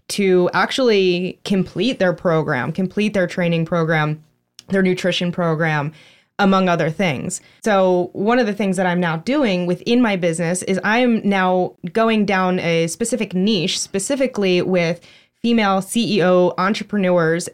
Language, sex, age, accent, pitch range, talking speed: English, female, 20-39, American, 175-205 Hz, 140 wpm